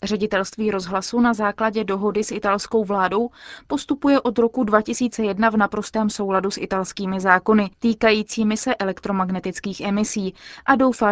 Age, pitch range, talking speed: 20-39, 205-245 Hz, 130 wpm